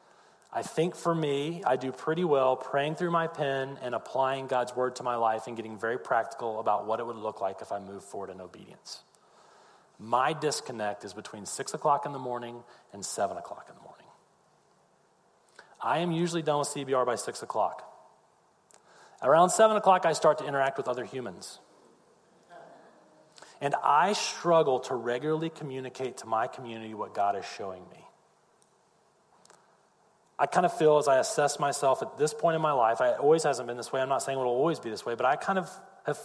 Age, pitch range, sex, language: 40-59, 110-150 Hz, male, English